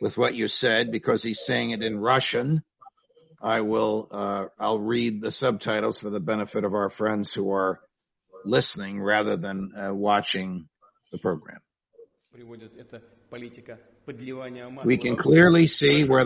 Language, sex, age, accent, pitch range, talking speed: English, male, 60-79, American, 120-140 Hz, 135 wpm